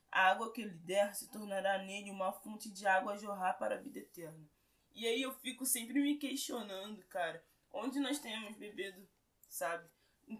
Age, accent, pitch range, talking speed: 20-39, Brazilian, 185-240 Hz, 185 wpm